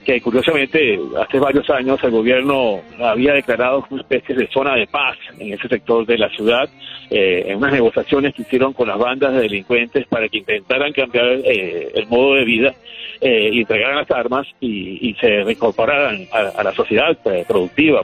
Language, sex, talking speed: Spanish, male, 185 wpm